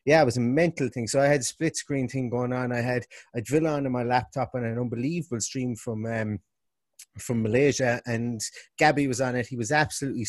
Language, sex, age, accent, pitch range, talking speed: English, male, 30-49, British, 120-145 Hz, 225 wpm